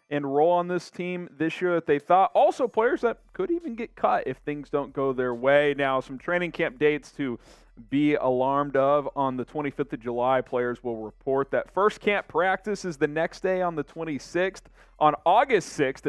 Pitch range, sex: 135-180 Hz, male